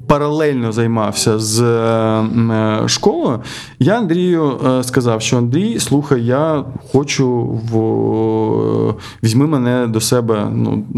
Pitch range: 115-135 Hz